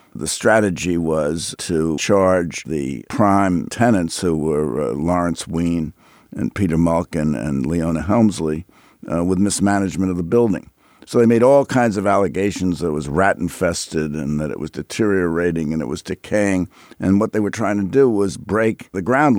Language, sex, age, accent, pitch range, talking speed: English, male, 60-79, American, 80-110 Hz, 180 wpm